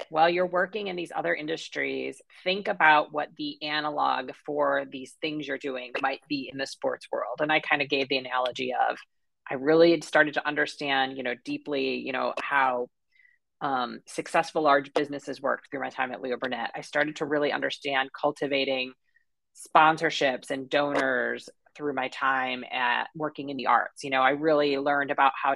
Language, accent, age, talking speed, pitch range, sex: English, American, 30-49, 180 wpm, 135-165 Hz, female